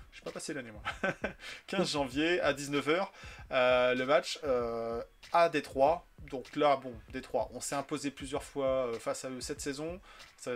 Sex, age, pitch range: male, 30-49, 135-190 Hz